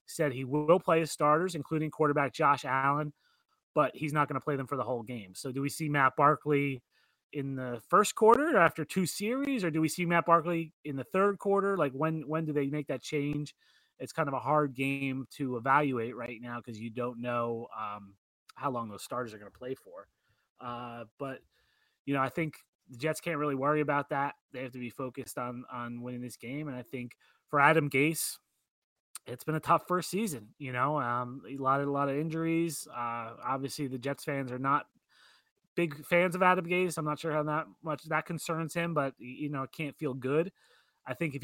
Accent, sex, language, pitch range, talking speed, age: American, male, English, 130-155 Hz, 220 wpm, 30-49